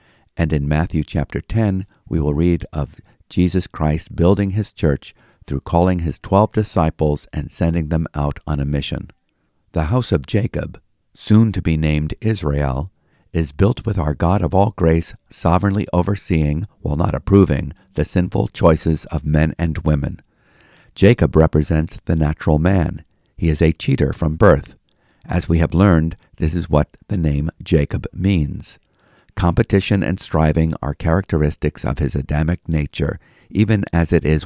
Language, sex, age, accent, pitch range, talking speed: English, male, 50-69, American, 75-95 Hz, 155 wpm